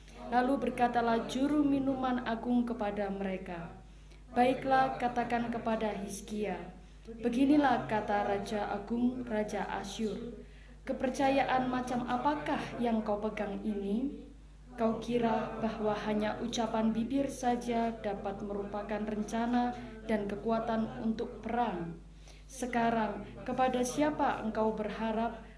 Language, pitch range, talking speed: Indonesian, 210-245 Hz, 100 wpm